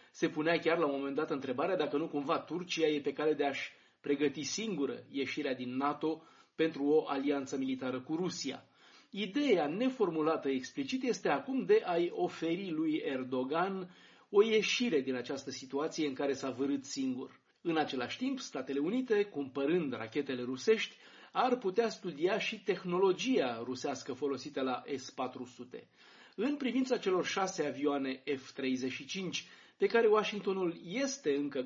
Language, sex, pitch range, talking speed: Romanian, male, 135-195 Hz, 145 wpm